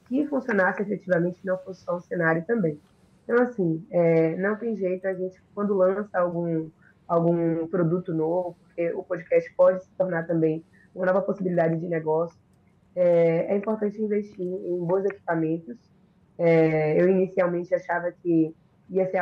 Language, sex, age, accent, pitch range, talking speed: Portuguese, female, 20-39, Brazilian, 170-205 Hz, 155 wpm